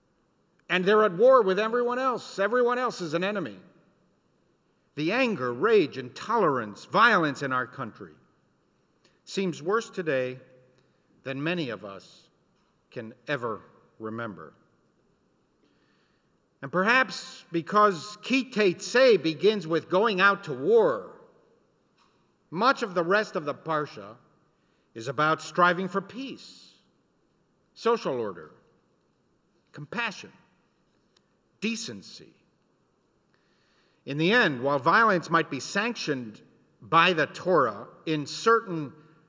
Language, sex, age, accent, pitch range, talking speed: English, male, 50-69, American, 140-210 Hz, 105 wpm